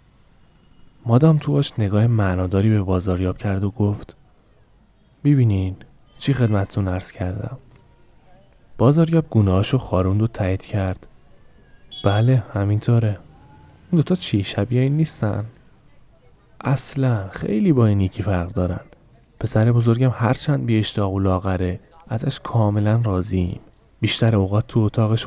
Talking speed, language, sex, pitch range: 115 wpm, Persian, male, 95-120 Hz